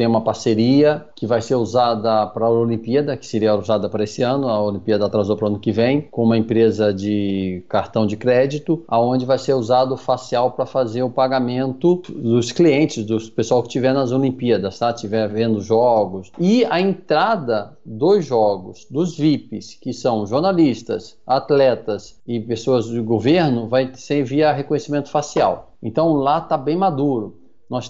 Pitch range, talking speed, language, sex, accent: 120-155 Hz, 170 wpm, Portuguese, male, Brazilian